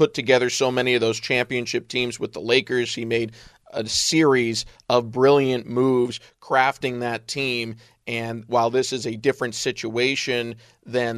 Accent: American